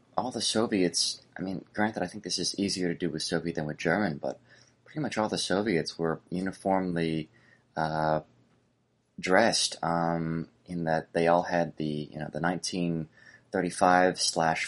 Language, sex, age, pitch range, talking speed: English, male, 20-39, 80-95 Hz, 165 wpm